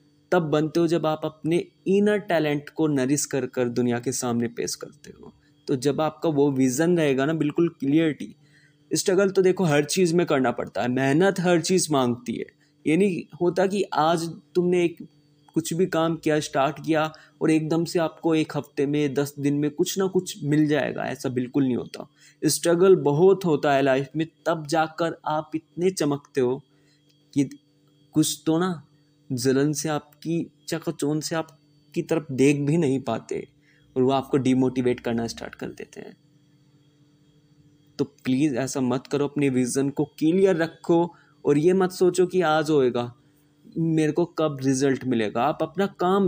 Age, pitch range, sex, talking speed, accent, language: 20-39, 145-170 Hz, male, 175 wpm, native, Hindi